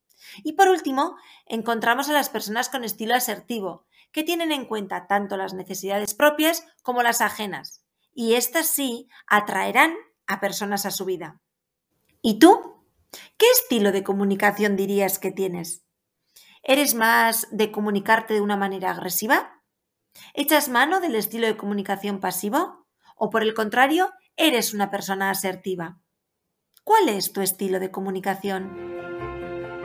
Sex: female